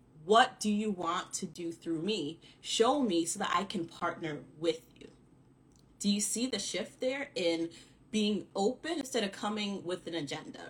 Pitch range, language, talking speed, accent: 165-215 Hz, English, 180 wpm, American